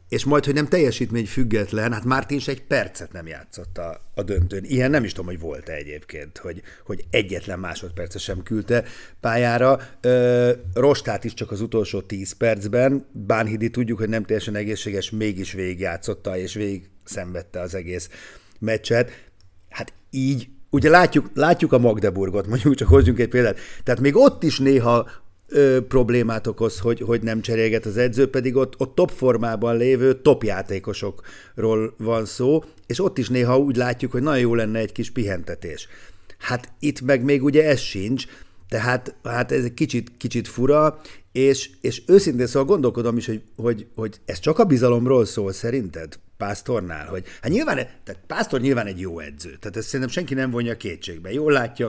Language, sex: Hungarian, male